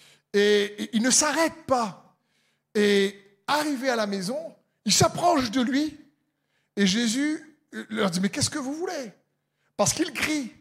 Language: French